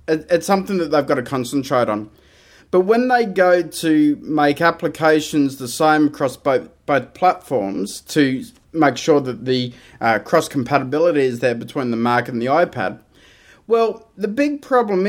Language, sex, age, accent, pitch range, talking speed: English, male, 20-39, Australian, 140-190 Hz, 165 wpm